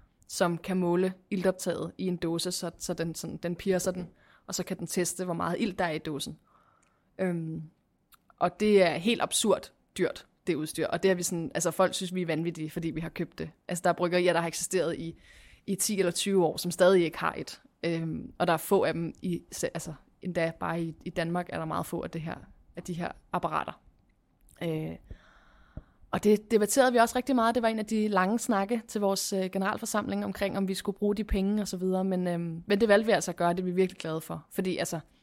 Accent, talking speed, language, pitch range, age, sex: native, 235 wpm, Danish, 170-205 Hz, 20-39, female